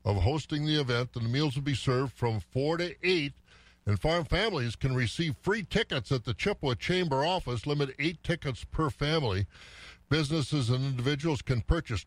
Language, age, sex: English, 50-69, male